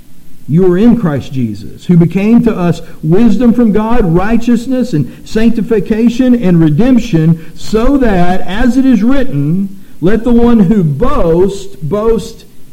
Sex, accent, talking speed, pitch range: male, American, 135 wpm, 145-215 Hz